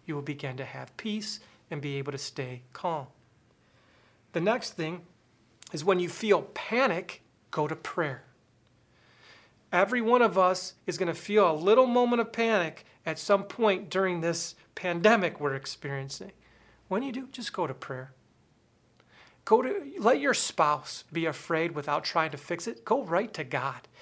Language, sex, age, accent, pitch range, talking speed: English, male, 40-59, American, 145-200 Hz, 165 wpm